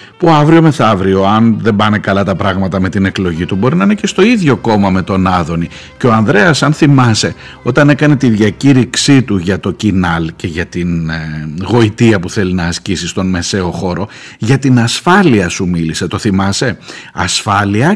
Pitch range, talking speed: 95-140 Hz, 185 wpm